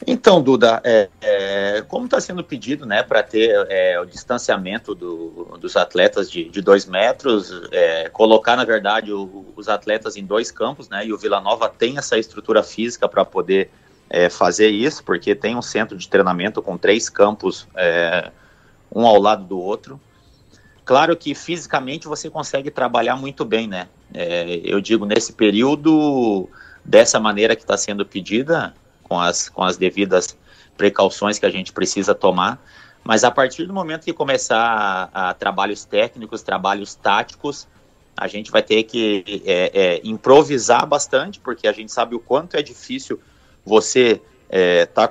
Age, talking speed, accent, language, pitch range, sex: 30-49, 155 wpm, Brazilian, Portuguese, 100-165 Hz, male